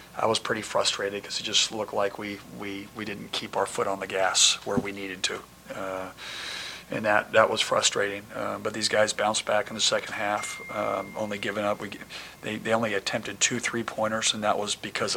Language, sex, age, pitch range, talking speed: English, male, 40-59, 100-110 Hz, 215 wpm